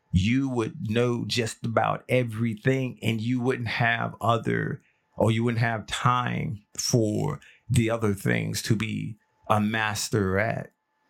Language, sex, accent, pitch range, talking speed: English, male, American, 110-135 Hz, 135 wpm